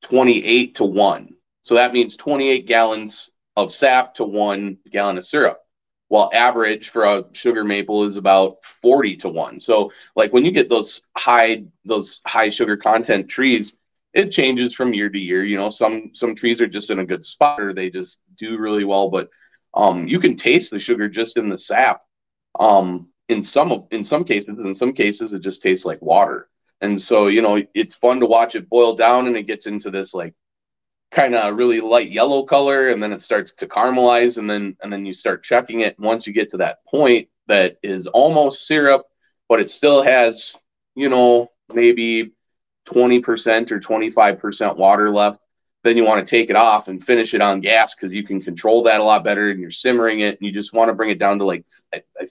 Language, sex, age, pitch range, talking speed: English, male, 30-49, 100-120 Hz, 210 wpm